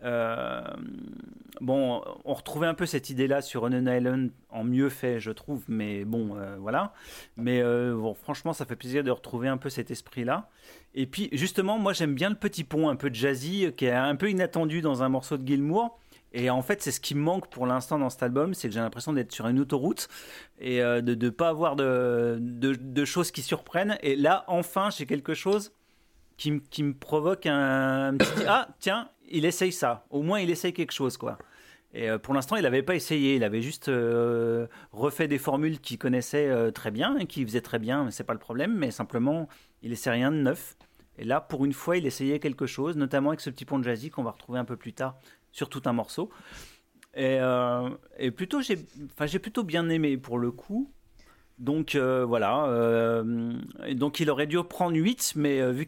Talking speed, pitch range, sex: 215 wpm, 125-160 Hz, male